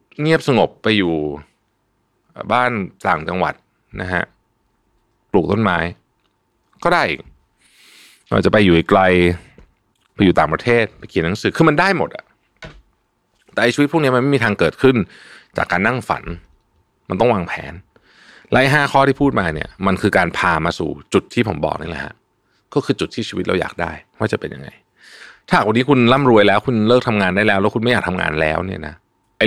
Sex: male